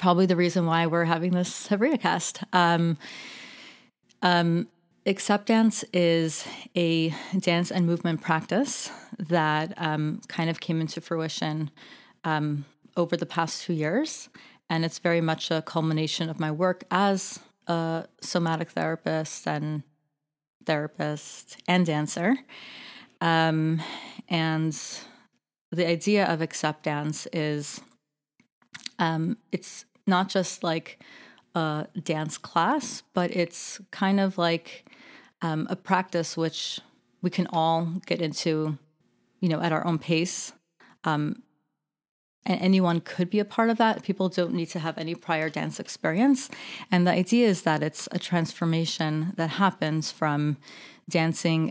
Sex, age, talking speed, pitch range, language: female, 30-49, 130 wpm, 160-195 Hz, English